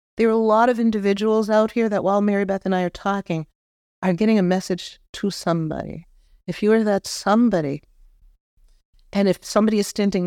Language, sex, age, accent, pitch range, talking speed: English, female, 50-69, American, 175-225 Hz, 185 wpm